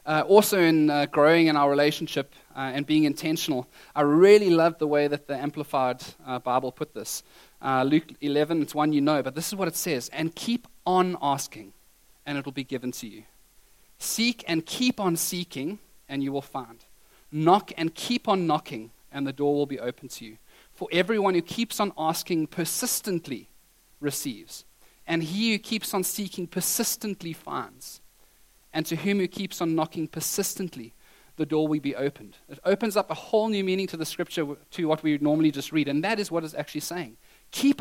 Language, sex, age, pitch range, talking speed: English, male, 30-49, 145-180 Hz, 195 wpm